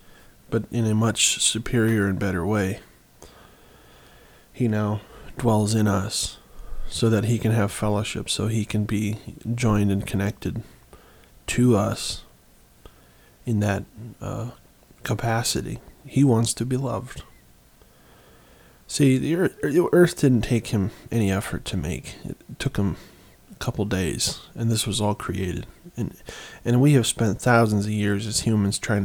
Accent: American